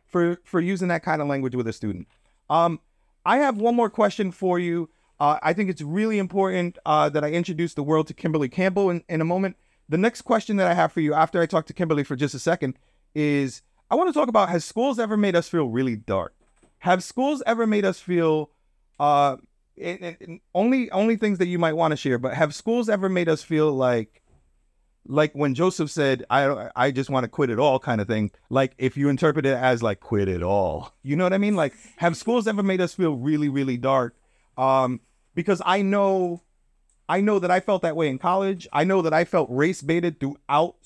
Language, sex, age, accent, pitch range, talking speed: English, male, 30-49, American, 130-180 Hz, 230 wpm